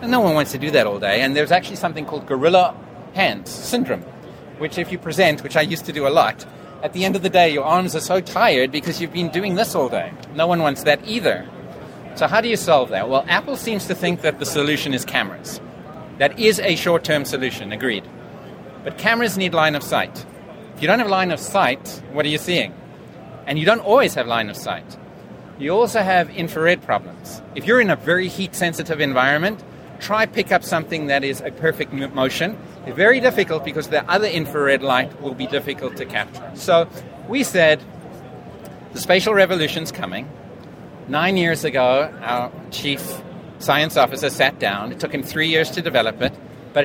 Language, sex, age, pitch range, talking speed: English, male, 40-59, 150-185 Hz, 200 wpm